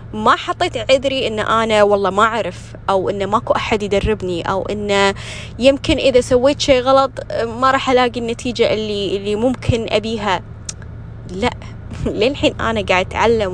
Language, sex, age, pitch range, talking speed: Arabic, female, 10-29, 180-230 Hz, 150 wpm